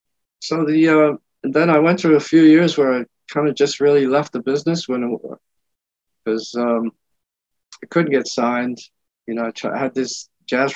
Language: English